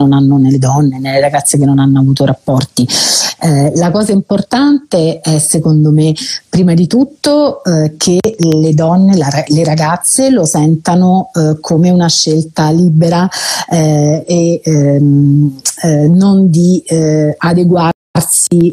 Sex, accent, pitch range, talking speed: female, native, 155-185 Hz, 140 wpm